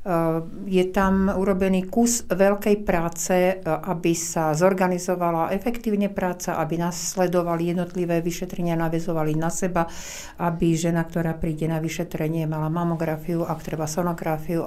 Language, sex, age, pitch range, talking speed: Slovak, female, 60-79, 170-190 Hz, 120 wpm